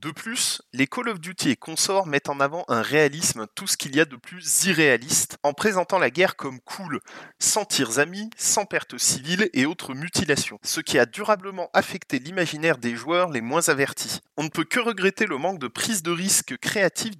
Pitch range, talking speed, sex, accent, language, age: 140-200 Hz, 205 wpm, male, French, French, 20-39